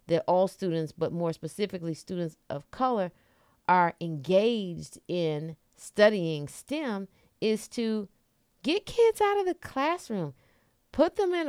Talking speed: 130 wpm